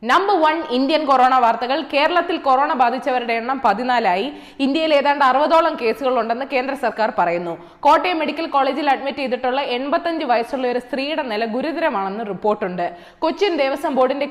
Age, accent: 20-39, native